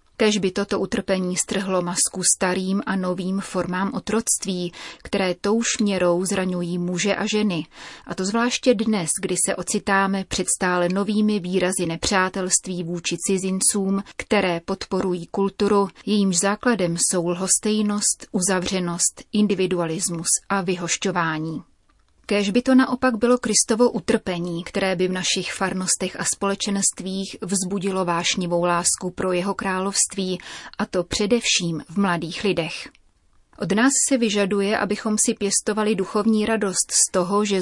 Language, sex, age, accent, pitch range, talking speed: Czech, female, 30-49, native, 180-210 Hz, 130 wpm